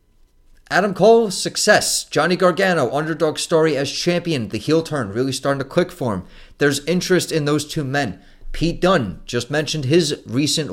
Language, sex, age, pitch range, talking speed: English, male, 30-49, 105-160 Hz, 170 wpm